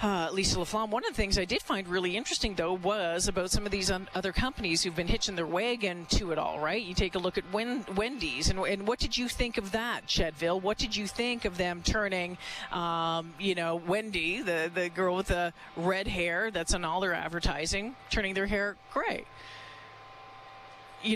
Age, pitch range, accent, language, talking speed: 40-59, 175-210 Hz, American, English, 215 wpm